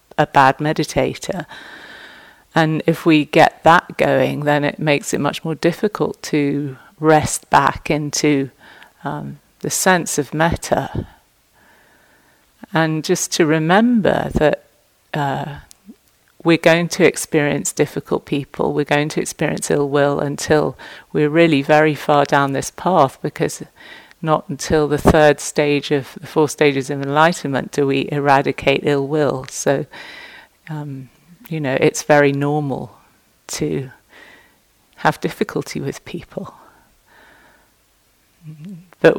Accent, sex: British, female